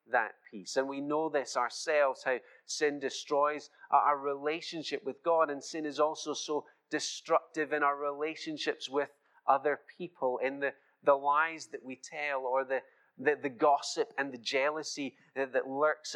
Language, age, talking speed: English, 30-49, 165 wpm